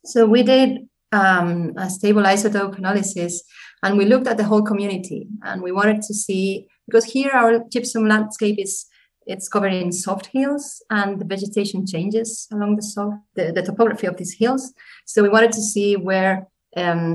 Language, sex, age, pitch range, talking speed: English, female, 30-49, 190-225 Hz, 180 wpm